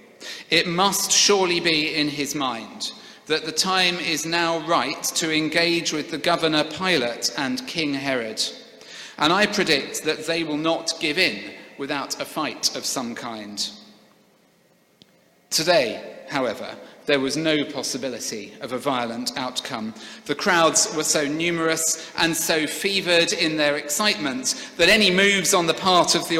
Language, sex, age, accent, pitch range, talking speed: English, male, 40-59, British, 150-185 Hz, 150 wpm